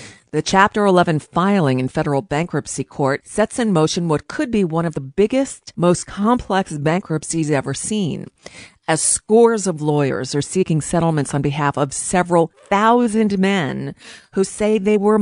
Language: English